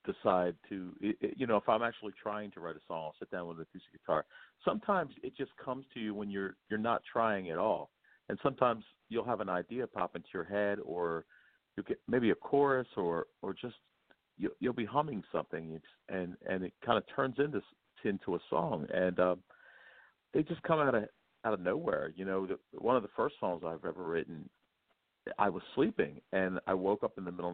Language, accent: English, American